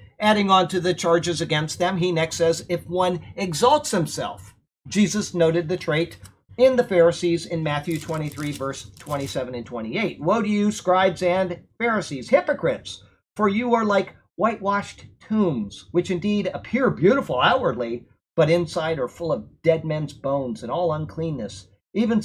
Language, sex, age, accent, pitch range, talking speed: English, male, 50-69, American, 145-190 Hz, 155 wpm